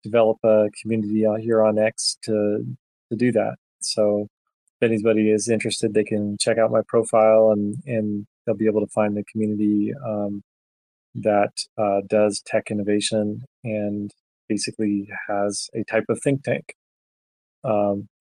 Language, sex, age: English, male, 20-39